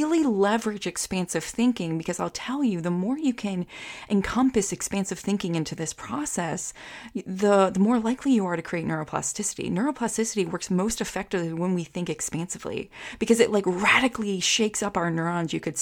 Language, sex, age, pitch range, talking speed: English, female, 30-49, 180-235 Hz, 170 wpm